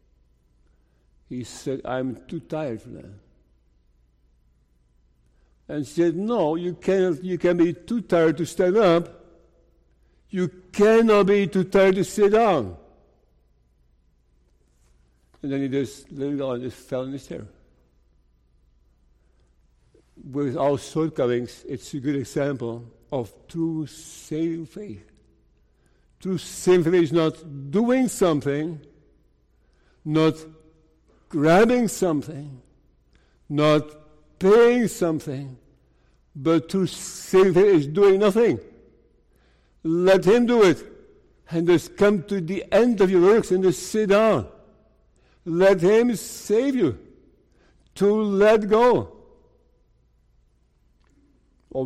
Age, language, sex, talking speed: 60-79, English, male, 110 wpm